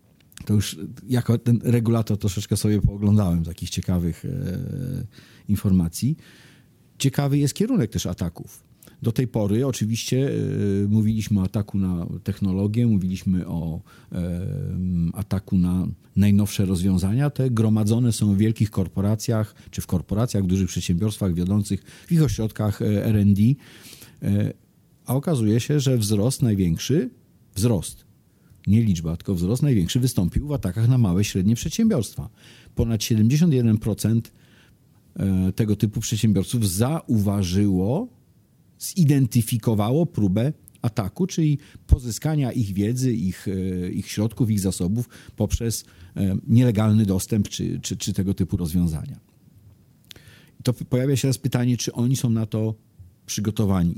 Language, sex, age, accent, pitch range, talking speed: Polish, male, 40-59, native, 95-125 Hz, 120 wpm